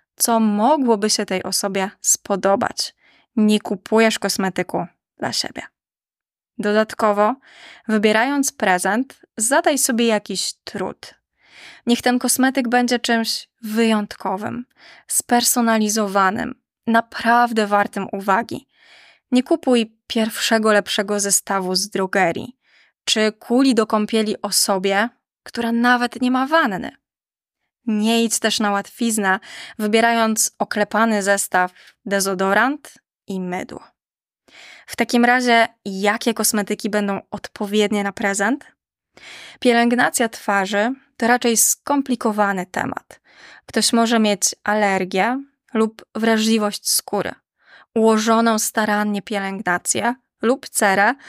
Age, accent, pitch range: 20-39, native, 205-240 Hz